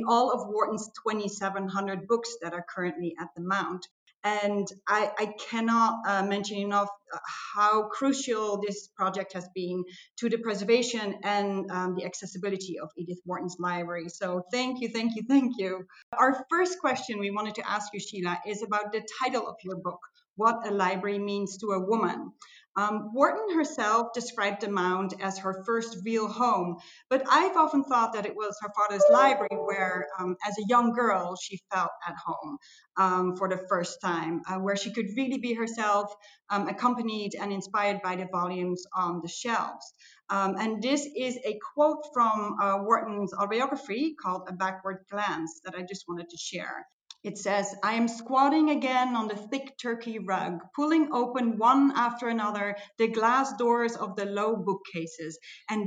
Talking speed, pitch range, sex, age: 175 wpm, 190-235 Hz, female, 30-49